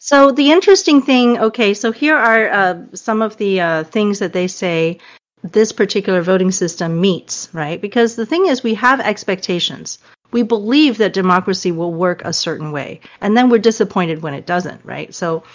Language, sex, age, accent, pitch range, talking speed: English, female, 40-59, American, 170-215 Hz, 185 wpm